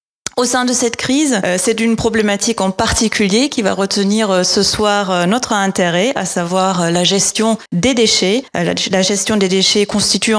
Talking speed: 160 wpm